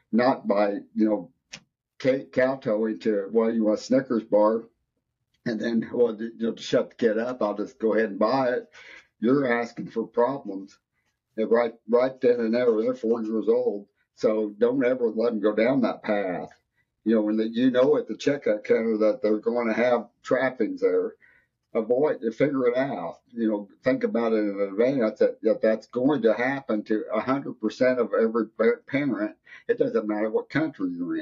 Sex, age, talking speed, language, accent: male, 50-69, 195 wpm, English, American